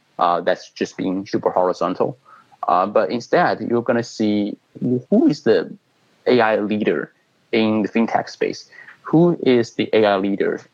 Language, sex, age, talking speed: English, male, 30-49, 150 wpm